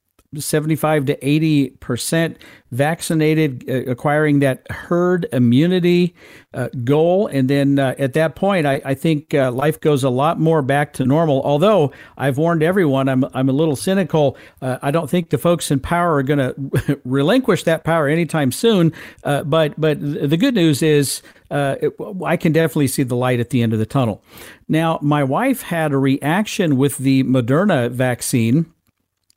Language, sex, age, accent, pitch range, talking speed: English, male, 50-69, American, 130-160 Hz, 175 wpm